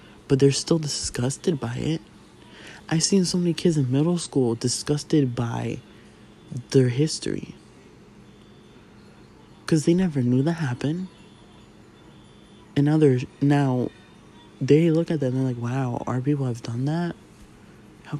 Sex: male